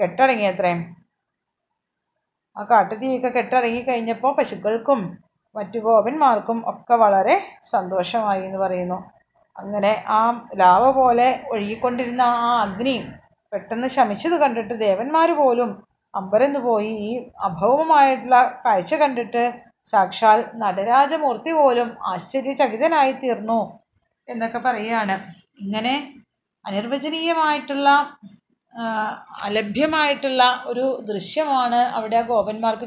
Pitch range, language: 215-270 Hz, Malayalam